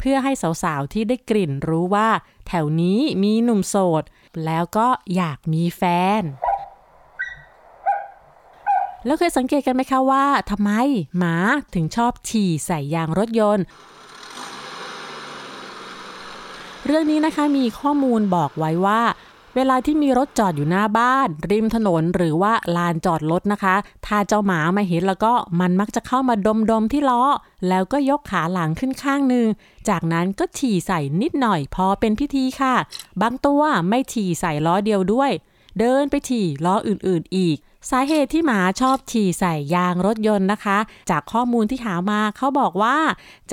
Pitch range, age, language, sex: 180-250 Hz, 30-49, Thai, female